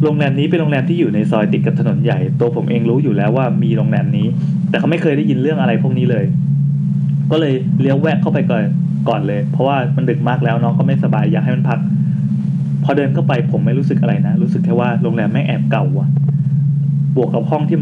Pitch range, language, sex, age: 145-170 Hz, Thai, male, 20-39